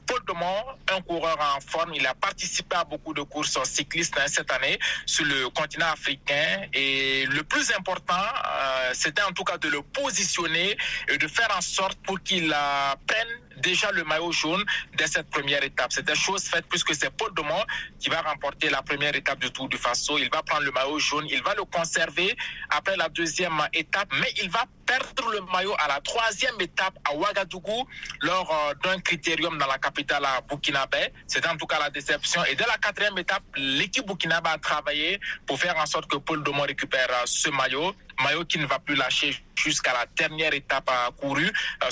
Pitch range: 140-180 Hz